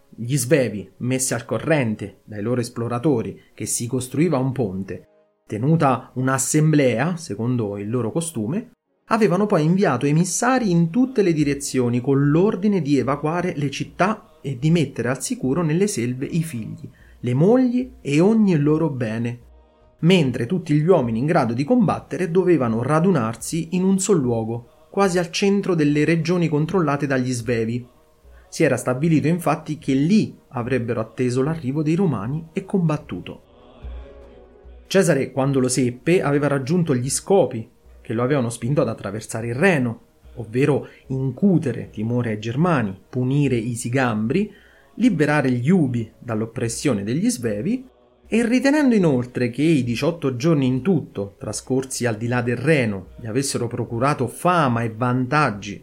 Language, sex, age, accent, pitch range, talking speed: Italian, male, 30-49, native, 120-170 Hz, 145 wpm